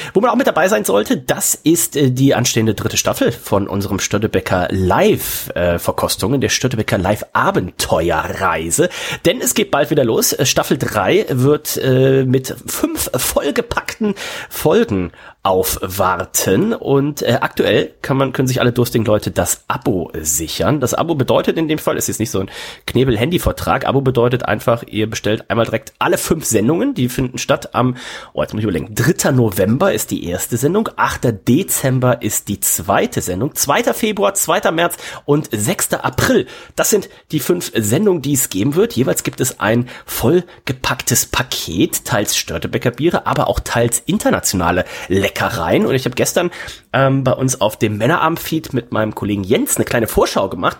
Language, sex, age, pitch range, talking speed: German, male, 30-49, 110-150 Hz, 165 wpm